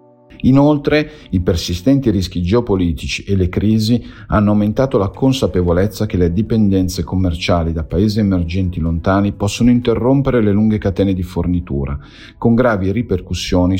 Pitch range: 90-115 Hz